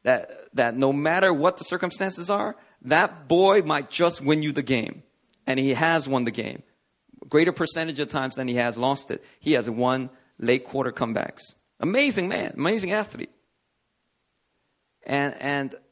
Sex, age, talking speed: male, 30-49, 165 wpm